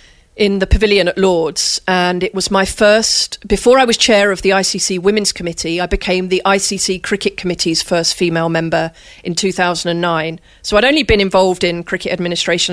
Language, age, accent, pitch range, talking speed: English, 30-49, British, 175-200 Hz, 195 wpm